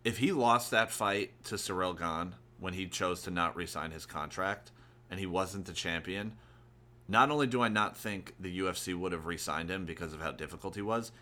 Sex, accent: male, American